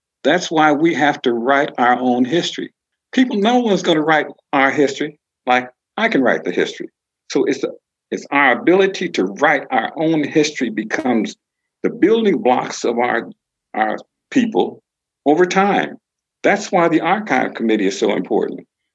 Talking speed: 160 wpm